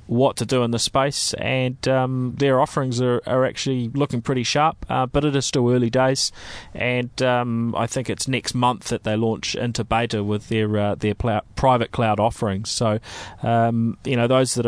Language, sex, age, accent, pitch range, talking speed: English, male, 20-39, Australian, 105-125 Hz, 200 wpm